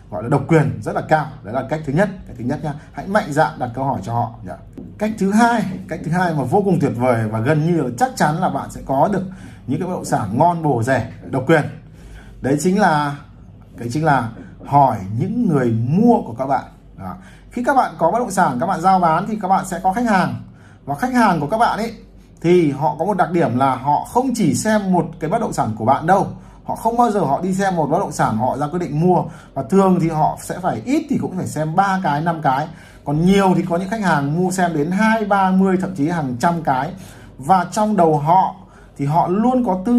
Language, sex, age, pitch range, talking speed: Vietnamese, male, 20-39, 140-195 Hz, 260 wpm